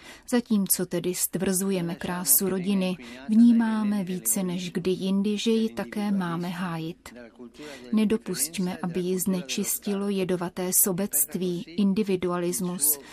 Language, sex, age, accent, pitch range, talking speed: Czech, female, 30-49, native, 180-205 Hz, 100 wpm